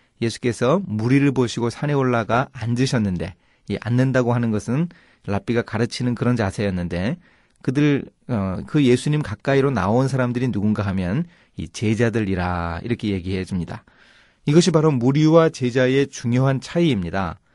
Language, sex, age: Korean, male, 30-49